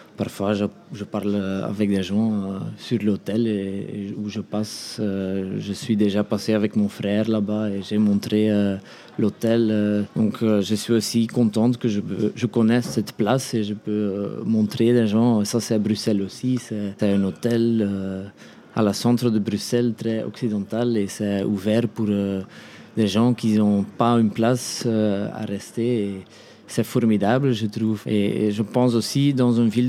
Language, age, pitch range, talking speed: French, 20-39, 105-120 Hz, 160 wpm